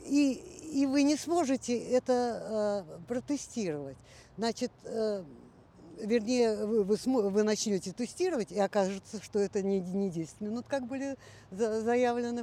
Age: 50-69